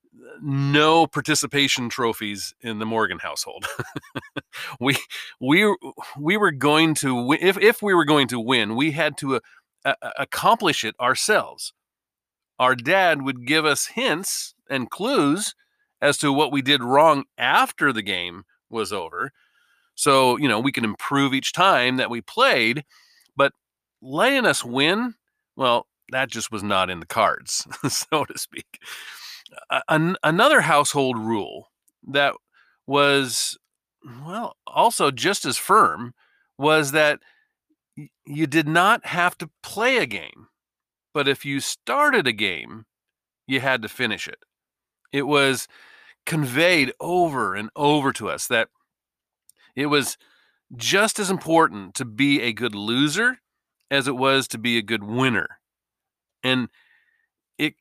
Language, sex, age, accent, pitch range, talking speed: English, male, 40-59, American, 125-155 Hz, 135 wpm